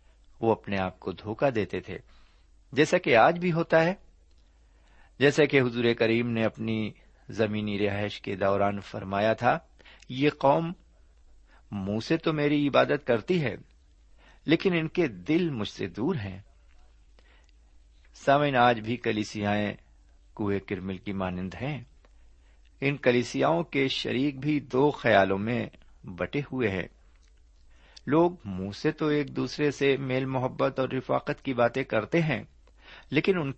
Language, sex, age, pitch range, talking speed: Urdu, male, 50-69, 85-135 Hz, 140 wpm